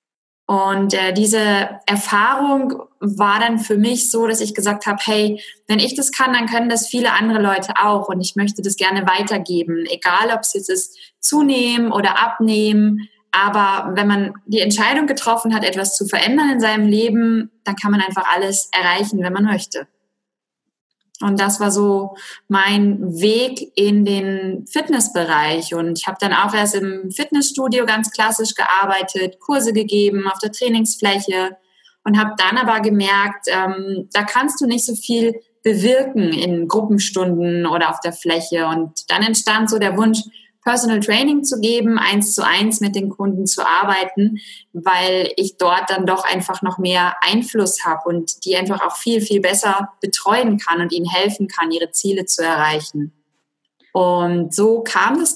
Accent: German